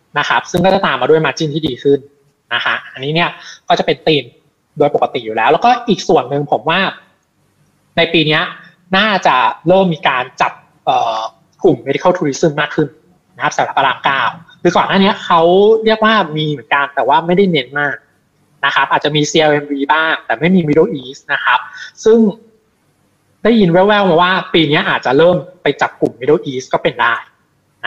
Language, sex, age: Thai, male, 20-39